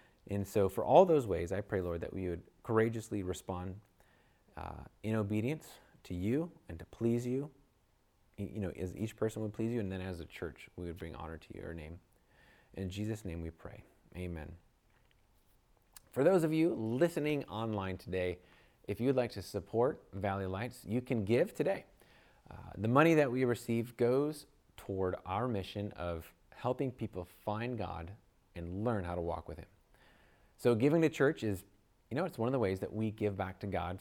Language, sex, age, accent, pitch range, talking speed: English, male, 30-49, American, 95-120 Hz, 190 wpm